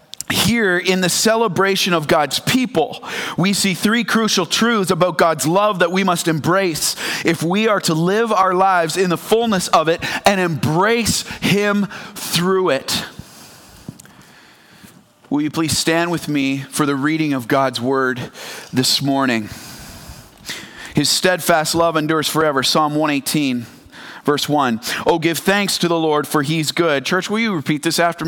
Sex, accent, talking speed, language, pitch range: male, American, 155 wpm, English, 140-180 Hz